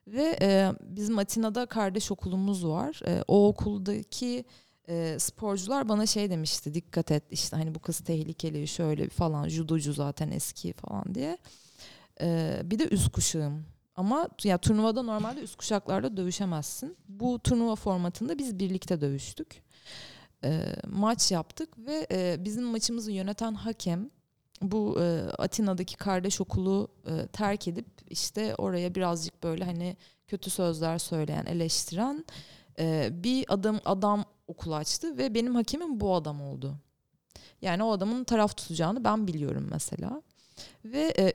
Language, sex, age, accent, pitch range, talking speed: Turkish, female, 30-49, native, 165-215 Hz, 130 wpm